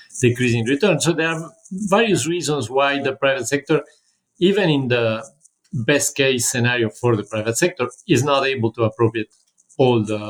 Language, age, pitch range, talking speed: English, 50-69, 115-145 Hz, 165 wpm